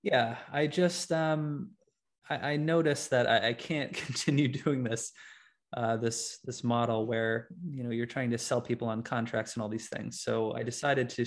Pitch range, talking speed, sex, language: 120-150 Hz, 190 wpm, male, English